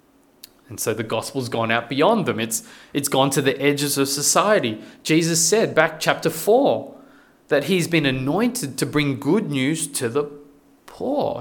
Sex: male